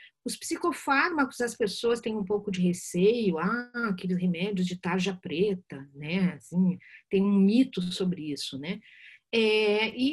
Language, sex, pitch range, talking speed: Portuguese, female, 195-275 Hz, 150 wpm